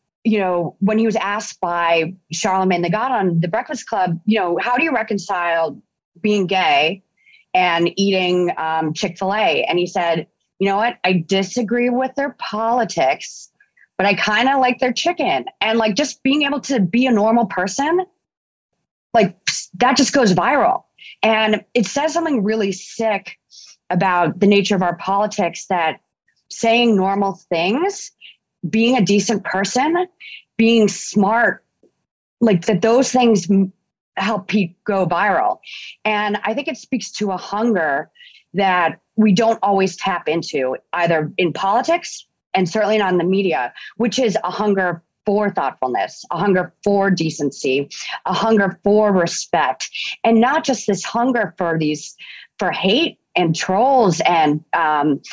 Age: 30-49